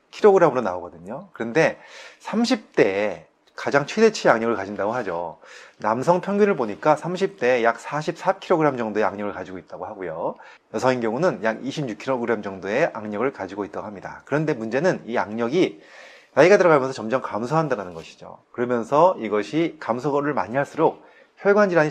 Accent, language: native, Korean